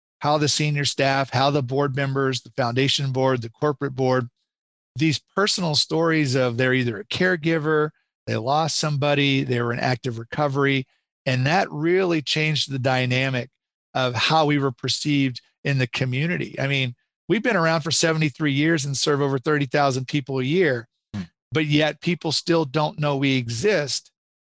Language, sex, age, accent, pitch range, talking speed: English, male, 50-69, American, 130-155 Hz, 165 wpm